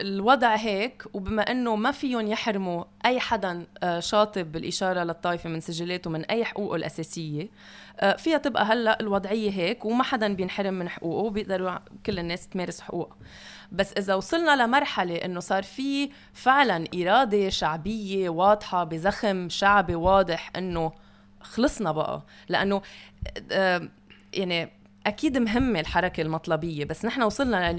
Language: Arabic